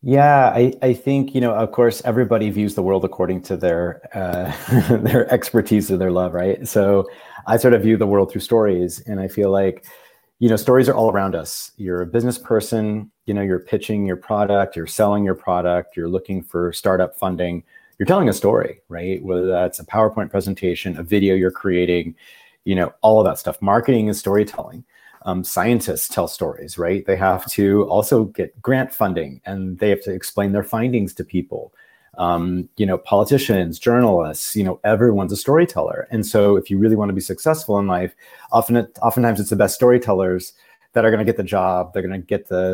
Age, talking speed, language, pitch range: 40-59, 205 wpm, English, 95-115 Hz